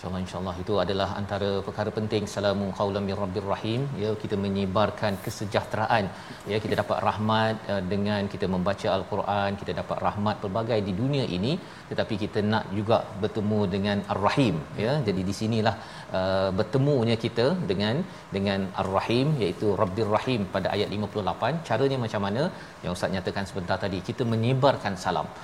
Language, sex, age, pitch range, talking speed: Malayalam, male, 40-59, 100-125 Hz, 155 wpm